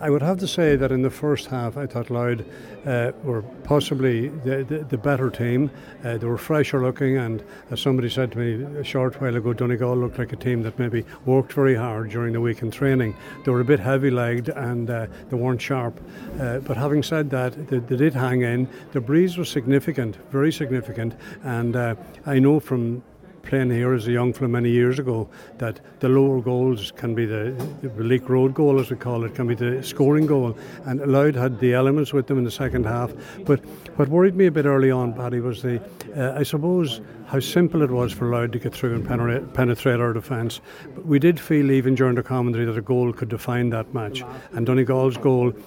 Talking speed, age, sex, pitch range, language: 220 wpm, 60-79, male, 120-140 Hz, English